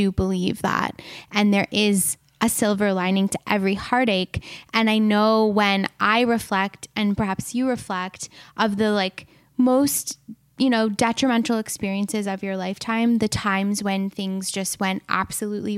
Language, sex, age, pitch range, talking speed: English, female, 10-29, 195-225 Hz, 150 wpm